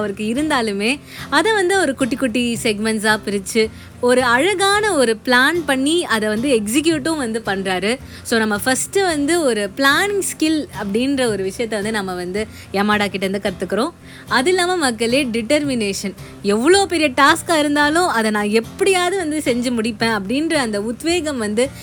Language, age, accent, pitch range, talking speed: Tamil, 20-39, native, 210-275 Hz, 150 wpm